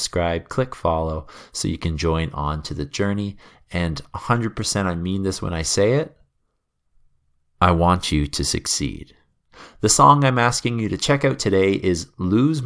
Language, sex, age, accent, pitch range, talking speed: English, male, 30-49, American, 75-105 Hz, 175 wpm